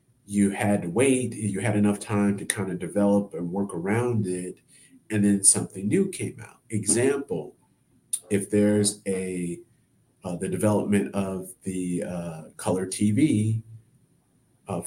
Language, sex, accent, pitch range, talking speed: English, male, American, 95-120 Hz, 140 wpm